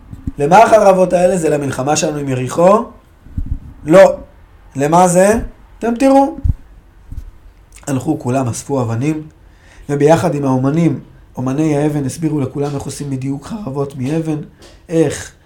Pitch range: 115-165 Hz